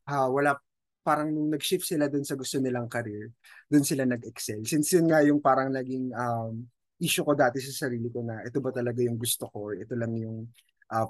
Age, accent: 20-39, native